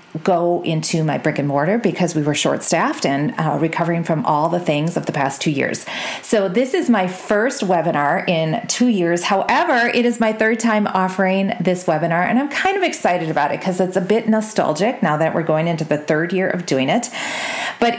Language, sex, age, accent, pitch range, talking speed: English, female, 40-59, American, 170-230 Hz, 215 wpm